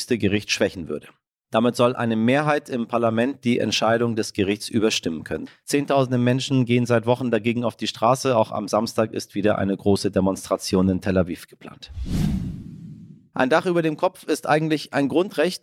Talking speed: 175 wpm